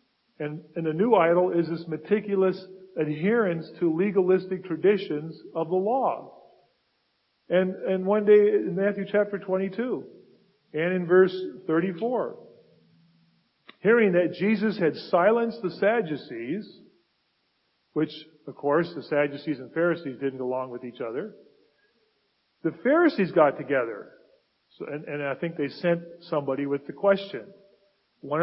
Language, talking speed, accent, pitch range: English, 130 wpm, American, 165-215 Hz